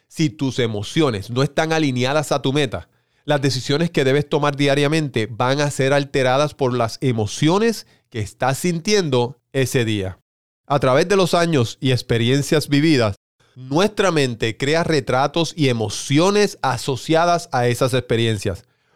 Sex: male